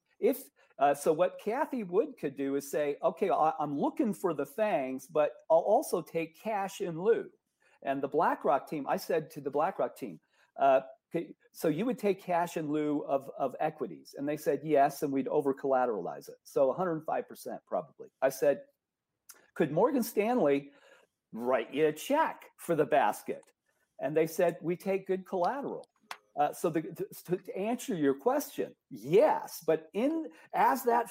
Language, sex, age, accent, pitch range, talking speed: English, male, 50-69, American, 150-240 Hz, 170 wpm